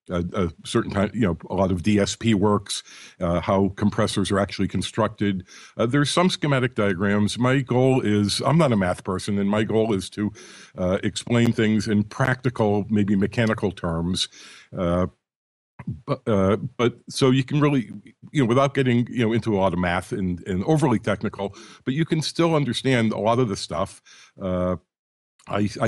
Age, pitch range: 50-69, 95-115 Hz